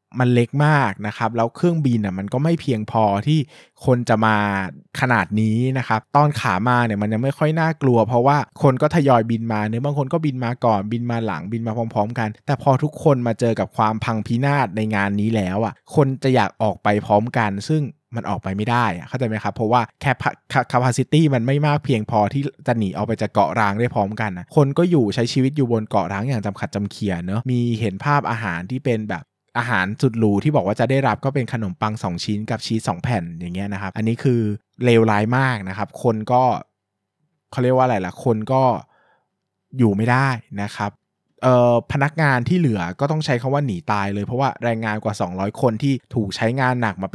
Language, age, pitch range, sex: Thai, 20-39, 105-130 Hz, male